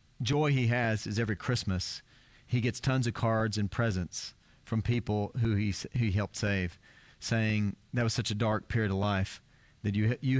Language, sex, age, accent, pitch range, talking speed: English, male, 40-59, American, 110-125 Hz, 190 wpm